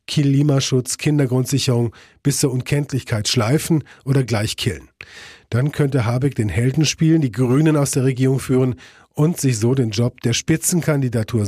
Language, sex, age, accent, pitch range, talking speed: German, male, 40-59, German, 120-145 Hz, 145 wpm